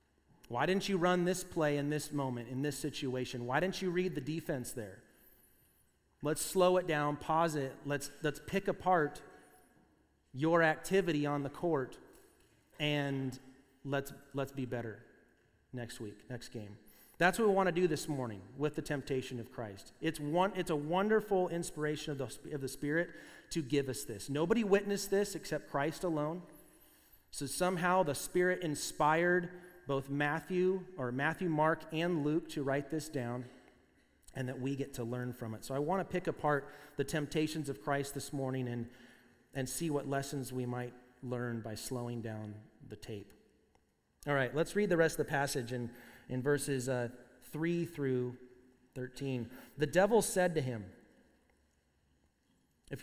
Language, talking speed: English, 165 wpm